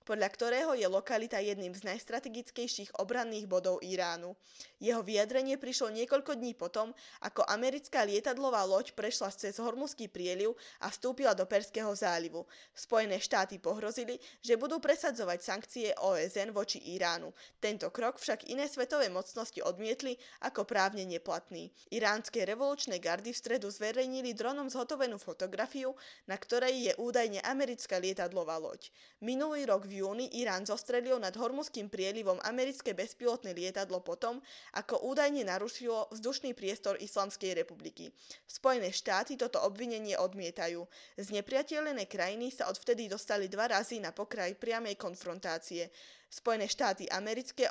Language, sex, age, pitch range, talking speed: Slovak, female, 20-39, 190-250 Hz, 130 wpm